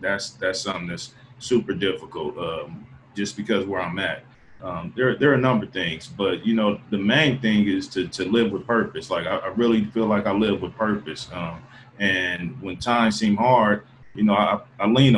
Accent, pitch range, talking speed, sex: American, 105-130 Hz, 210 wpm, male